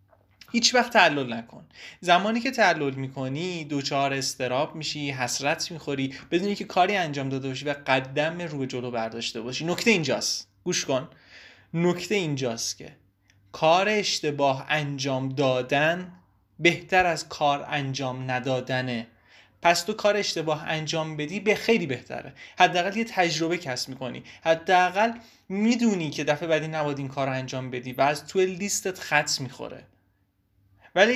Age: 30-49